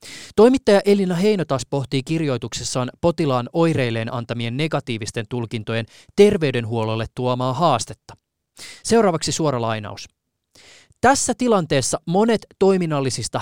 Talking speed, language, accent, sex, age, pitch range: 95 wpm, Finnish, native, male, 30-49, 120-165 Hz